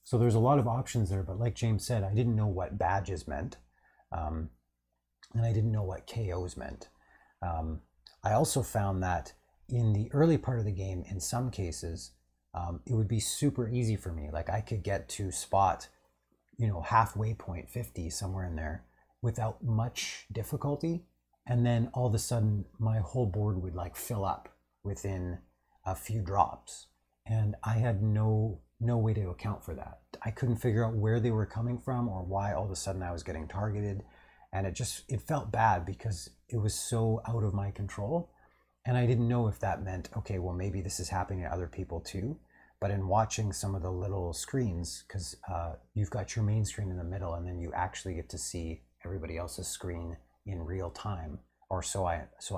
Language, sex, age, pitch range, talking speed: English, male, 30-49, 85-110 Hz, 200 wpm